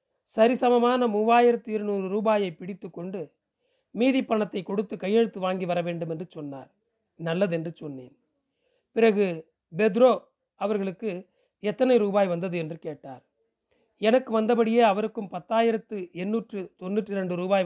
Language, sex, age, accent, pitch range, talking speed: Tamil, male, 40-59, native, 180-230 Hz, 100 wpm